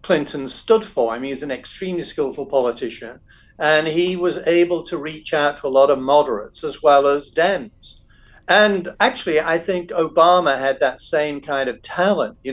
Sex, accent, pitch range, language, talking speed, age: male, British, 135-185 Hz, English, 180 wpm, 50-69